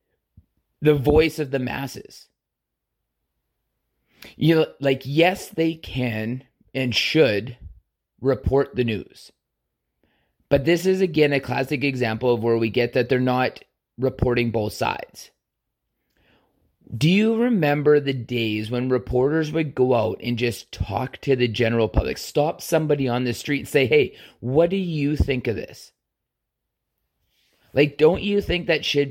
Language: English